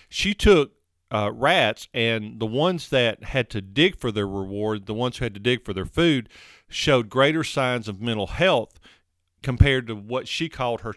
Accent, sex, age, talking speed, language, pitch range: American, male, 40-59, 190 wpm, English, 105-130 Hz